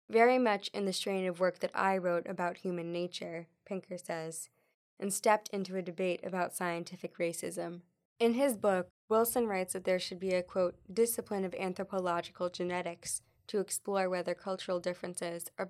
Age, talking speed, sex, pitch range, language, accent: 10-29, 170 wpm, female, 170-190 Hz, English, American